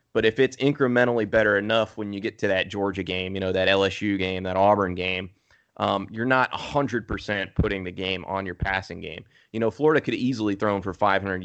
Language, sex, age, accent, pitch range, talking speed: English, male, 30-49, American, 95-105 Hz, 215 wpm